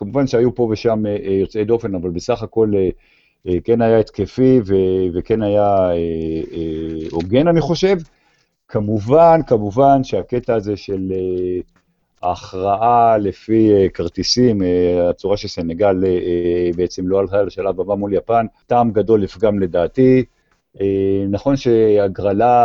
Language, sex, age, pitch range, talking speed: Hebrew, male, 50-69, 95-120 Hz, 105 wpm